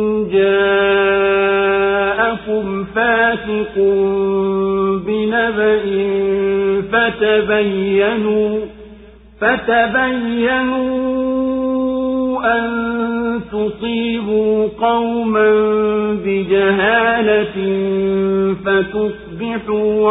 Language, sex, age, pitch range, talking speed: Swahili, male, 50-69, 205-230 Hz, 35 wpm